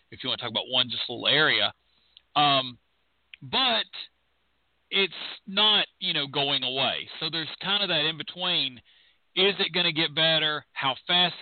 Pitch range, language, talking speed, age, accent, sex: 125-175 Hz, English, 170 wpm, 40-59, American, male